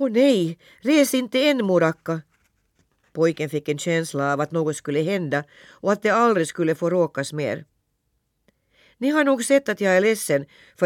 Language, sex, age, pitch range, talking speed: Swedish, female, 50-69, 135-185 Hz, 180 wpm